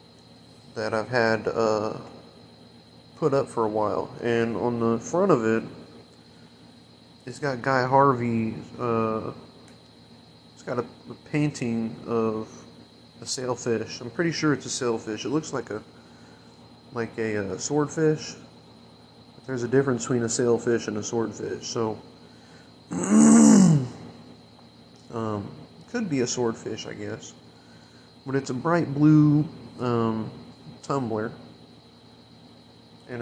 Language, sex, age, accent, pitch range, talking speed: English, male, 30-49, American, 110-135 Hz, 125 wpm